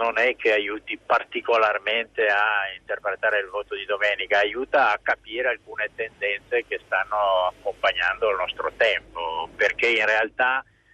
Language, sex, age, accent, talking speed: Italian, male, 50-69, native, 135 wpm